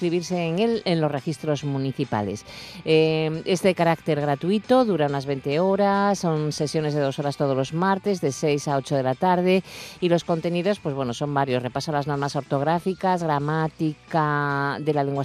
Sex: female